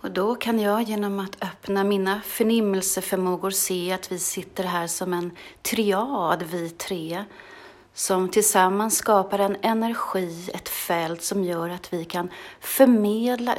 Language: English